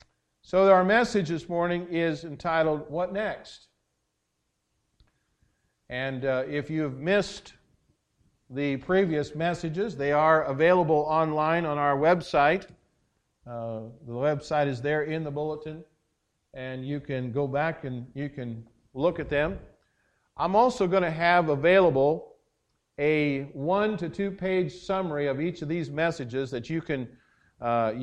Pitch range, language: 130-165 Hz, English